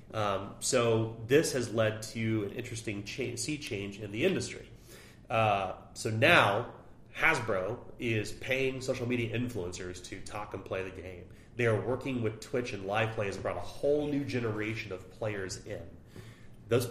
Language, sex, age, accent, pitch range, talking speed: English, male, 30-49, American, 100-125 Hz, 165 wpm